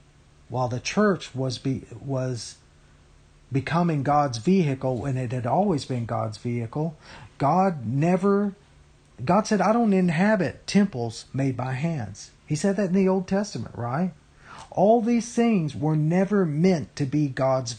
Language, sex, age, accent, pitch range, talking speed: English, male, 40-59, American, 130-180 Hz, 150 wpm